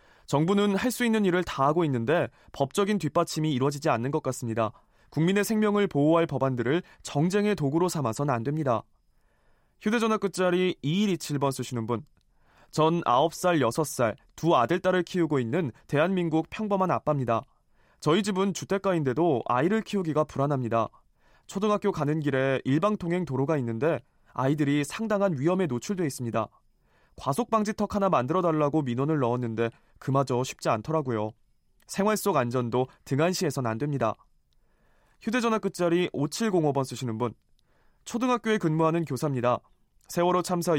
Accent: native